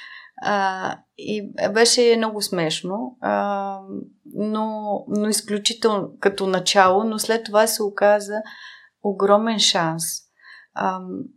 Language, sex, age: Bulgarian, female, 30-49